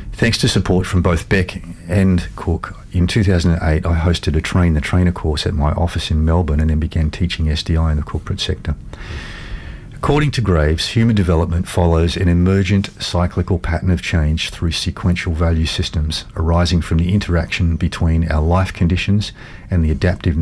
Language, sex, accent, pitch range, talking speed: English, male, Australian, 80-95 Hz, 170 wpm